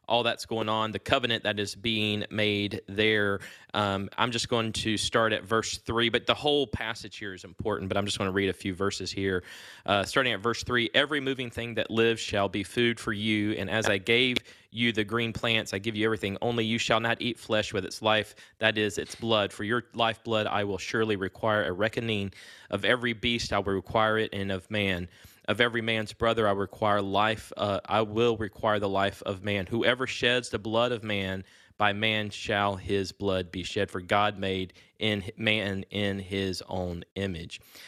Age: 20-39